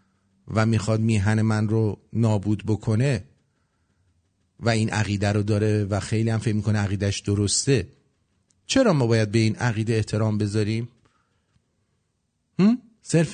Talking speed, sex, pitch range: 125 wpm, male, 95-140 Hz